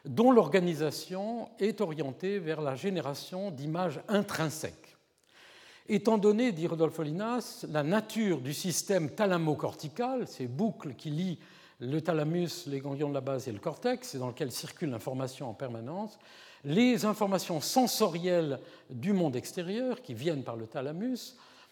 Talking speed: 140 wpm